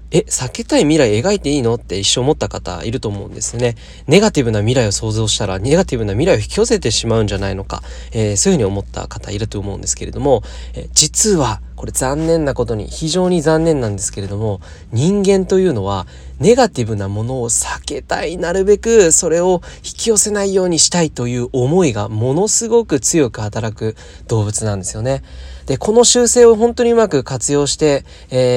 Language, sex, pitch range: Japanese, male, 105-155 Hz